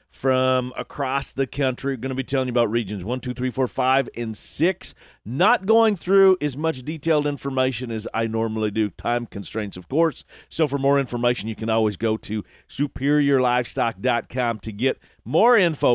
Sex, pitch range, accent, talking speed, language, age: male, 125-155 Hz, American, 175 wpm, English, 40-59